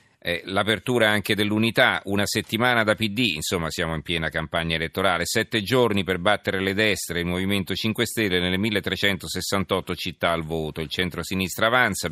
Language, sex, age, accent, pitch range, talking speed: Italian, male, 40-59, native, 85-105 Hz, 155 wpm